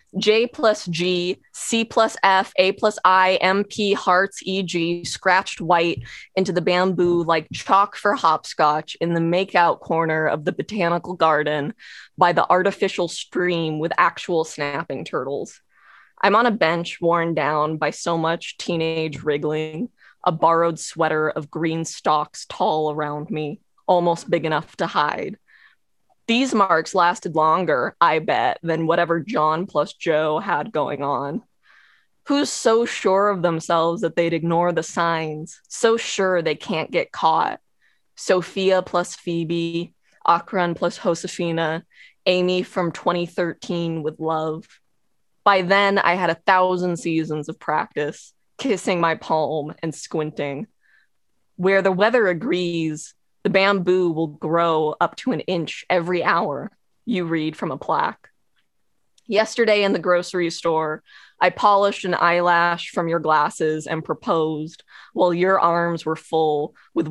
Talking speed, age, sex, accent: 140 wpm, 20-39, female, American